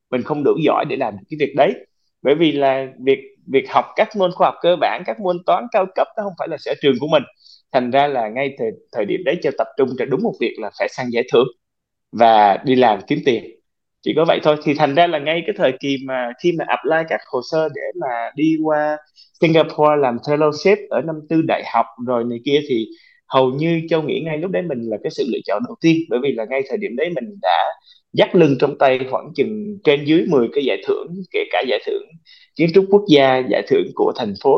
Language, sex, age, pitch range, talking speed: Vietnamese, male, 20-39, 140-215 Hz, 250 wpm